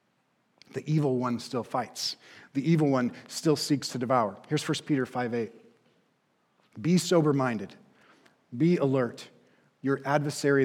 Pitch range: 125-160 Hz